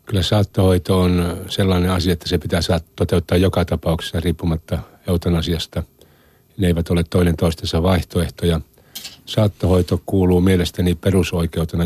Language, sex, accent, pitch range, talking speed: Finnish, male, native, 80-90 Hz, 120 wpm